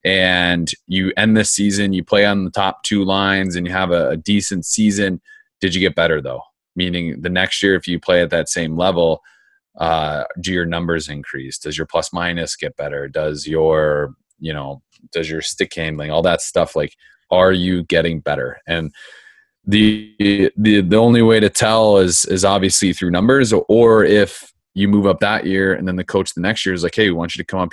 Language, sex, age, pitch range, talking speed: English, male, 30-49, 80-100 Hz, 210 wpm